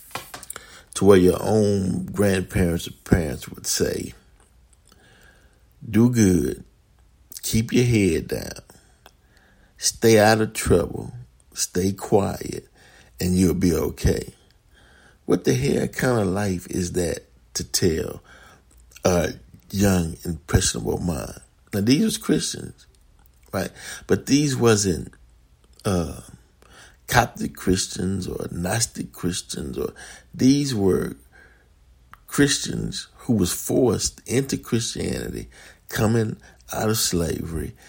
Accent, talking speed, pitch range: American, 105 wpm, 85-110 Hz